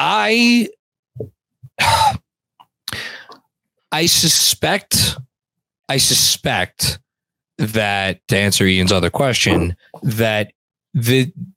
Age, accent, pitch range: 20-39, American, 100-125 Hz